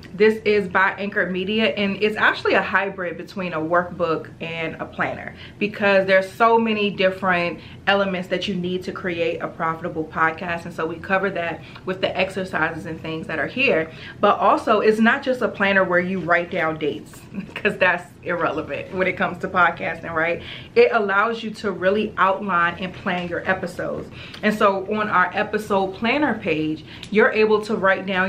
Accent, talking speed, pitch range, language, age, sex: American, 180 wpm, 180-215 Hz, English, 30-49, female